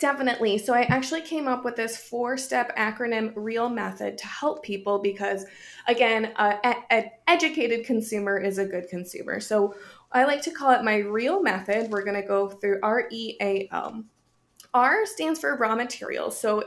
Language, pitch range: English, 205-255 Hz